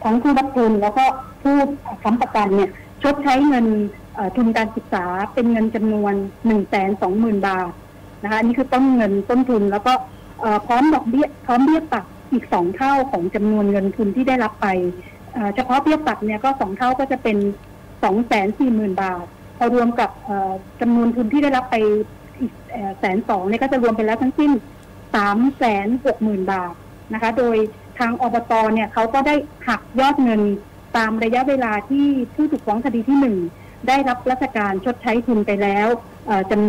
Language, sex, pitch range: Thai, female, 210-260 Hz